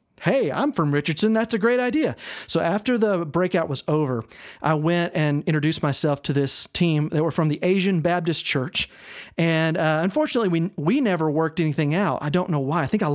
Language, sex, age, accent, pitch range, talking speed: English, male, 40-59, American, 150-195 Hz, 205 wpm